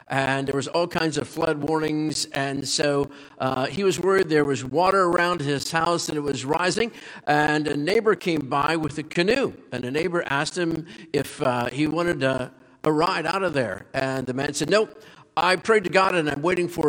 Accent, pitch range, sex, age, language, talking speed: American, 120-160 Hz, male, 50-69, English, 215 wpm